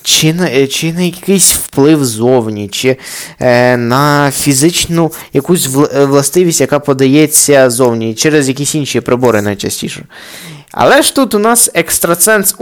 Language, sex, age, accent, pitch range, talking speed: Ukrainian, male, 20-39, native, 130-185 Hz, 130 wpm